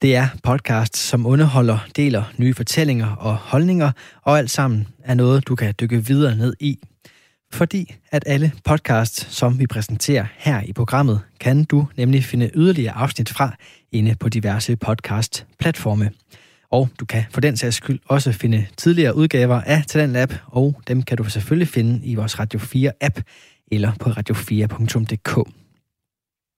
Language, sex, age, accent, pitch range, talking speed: Danish, male, 20-39, native, 115-140 Hz, 165 wpm